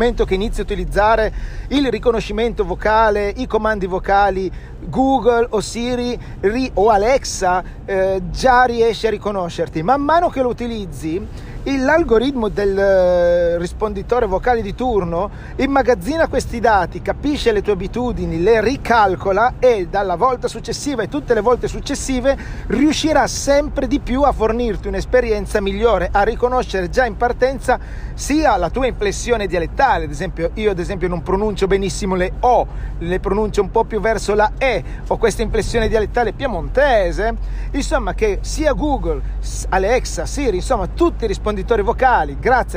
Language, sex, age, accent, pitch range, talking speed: Italian, male, 40-59, native, 200-260 Hz, 145 wpm